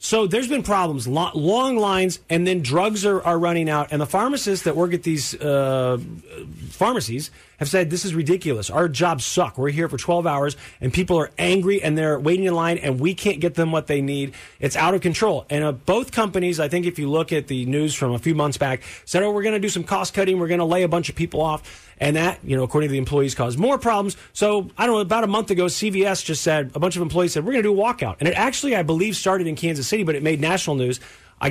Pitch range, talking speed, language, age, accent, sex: 150-195 Hz, 265 wpm, English, 30-49, American, male